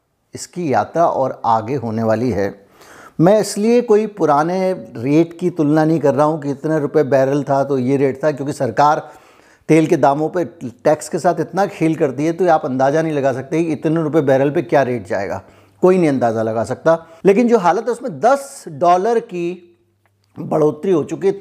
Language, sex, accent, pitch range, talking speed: Hindi, male, native, 135-170 Hz, 195 wpm